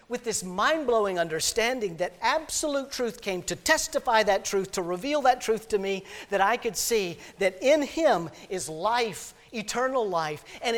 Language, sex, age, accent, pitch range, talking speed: English, male, 50-69, American, 155-225 Hz, 165 wpm